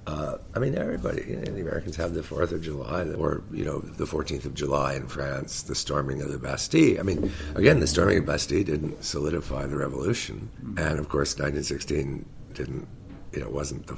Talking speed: 195 wpm